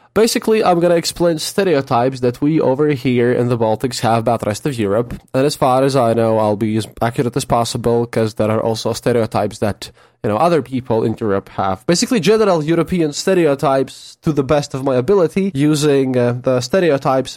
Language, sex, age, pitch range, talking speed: English, male, 20-39, 120-155 Hz, 195 wpm